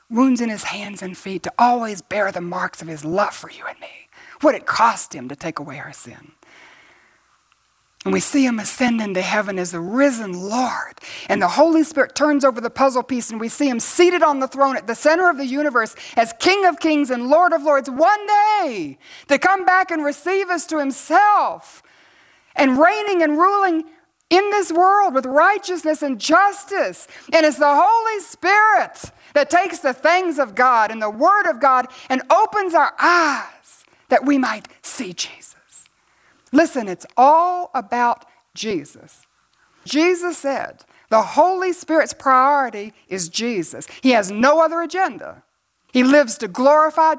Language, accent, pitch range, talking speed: English, American, 245-345 Hz, 175 wpm